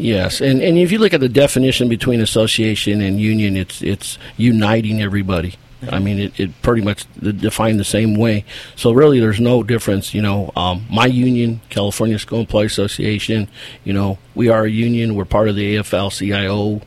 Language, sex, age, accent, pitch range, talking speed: English, male, 50-69, American, 105-125 Hz, 185 wpm